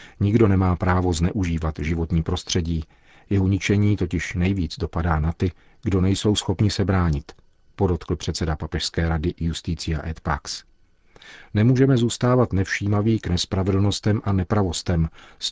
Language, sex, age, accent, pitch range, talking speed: Czech, male, 40-59, native, 85-95 Hz, 130 wpm